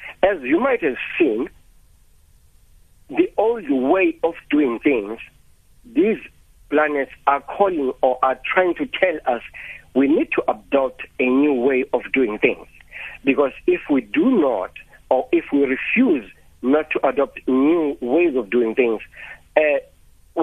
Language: English